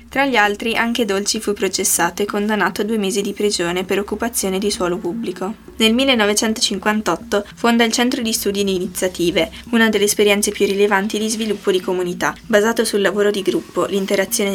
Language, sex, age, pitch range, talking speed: Italian, female, 20-39, 190-220 Hz, 175 wpm